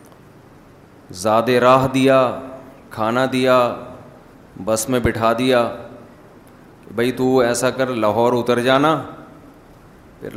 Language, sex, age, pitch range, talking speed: Urdu, male, 30-49, 120-145 Hz, 100 wpm